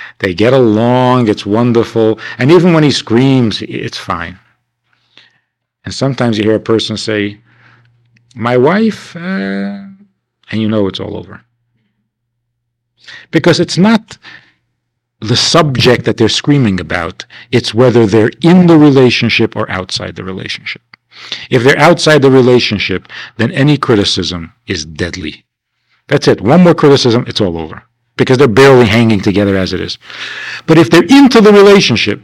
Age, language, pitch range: 50-69, English, 110-155 Hz